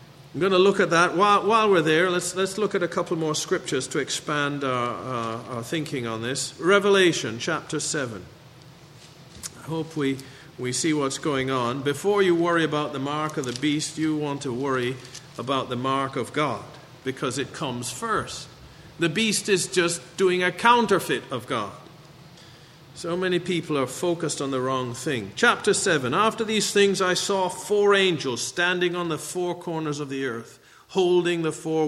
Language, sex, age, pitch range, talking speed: English, male, 50-69, 135-170 Hz, 185 wpm